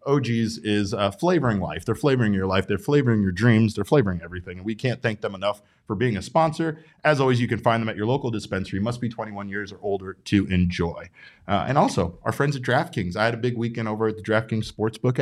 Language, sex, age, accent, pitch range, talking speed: English, male, 30-49, American, 100-125 Hz, 240 wpm